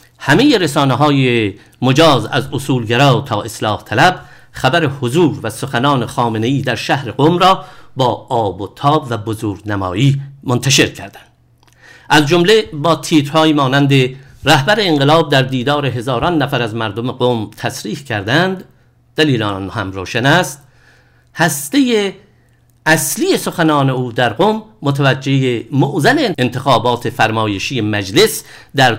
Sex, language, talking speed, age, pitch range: male, English, 125 wpm, 50-69, 120-155 Hz